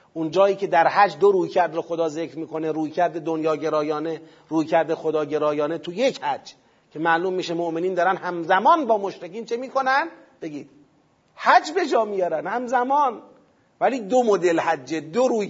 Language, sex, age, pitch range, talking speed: Persian, male, 40-59, 160-210 Hz, 175 wpm